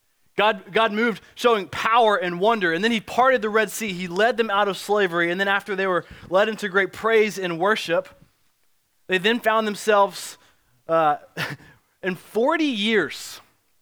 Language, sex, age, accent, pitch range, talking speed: English, male, 20-39, American, 160-215 Hz, 170 wpm